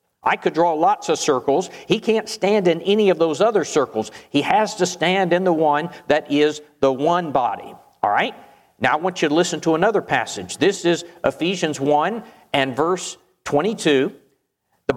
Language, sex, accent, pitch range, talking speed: English, male, American, 150-190 Hz, 185 wpm